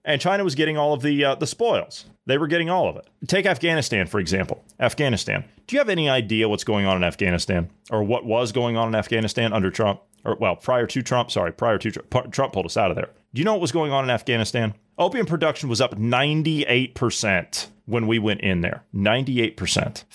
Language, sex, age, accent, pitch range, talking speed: English, male, 30-49, American, 110-150 Hz, 225 wpm